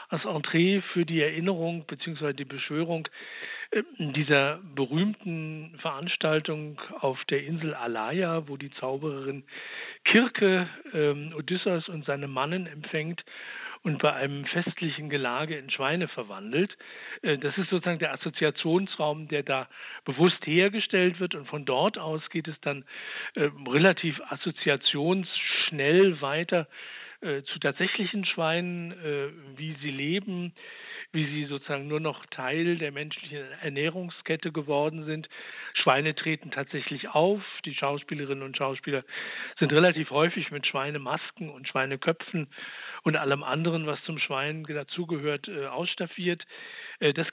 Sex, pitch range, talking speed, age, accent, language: male, 145-185 Hz, 125 wpm, 60-79, German, German